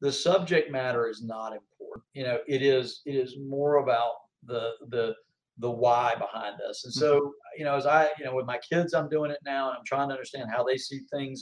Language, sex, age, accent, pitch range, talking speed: English, male, 50-69, American, 125-165 Hz, 230 wpm